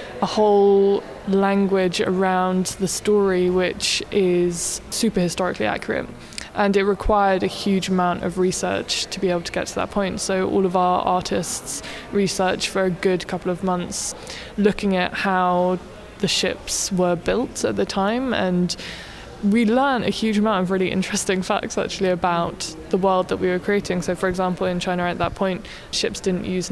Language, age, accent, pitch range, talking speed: English, 20-39, British, 175-190 Hz, 175 wpm